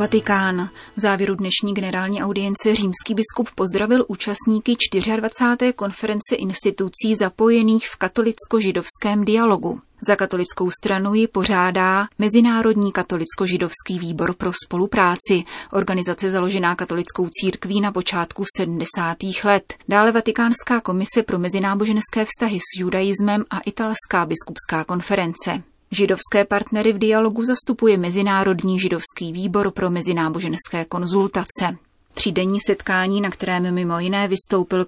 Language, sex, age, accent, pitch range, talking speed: Czech, female, 30-49, native, 180-210 Hz, 110 wpm